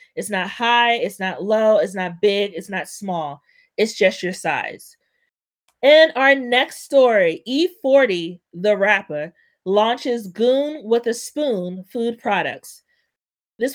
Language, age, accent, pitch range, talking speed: English, 30-49, American, 200-285 Hz, 135 wpm